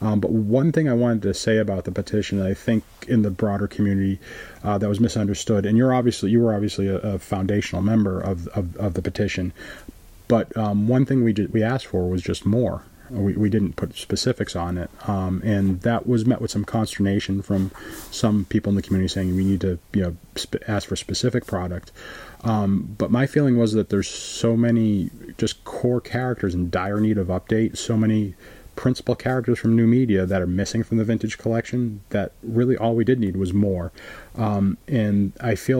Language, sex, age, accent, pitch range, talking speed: English, male, 30-49, American, 95-115 Hz, 210 wpm